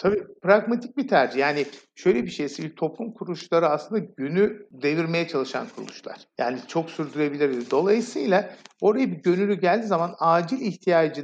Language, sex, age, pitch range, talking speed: Turkish, male, 50-69, 150-210 Hz, 145 wpm